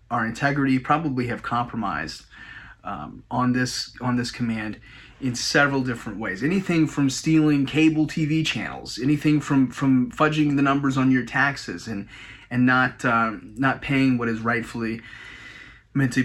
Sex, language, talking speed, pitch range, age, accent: male, English, 150 wpm, 120-155 Hz, 30-49, American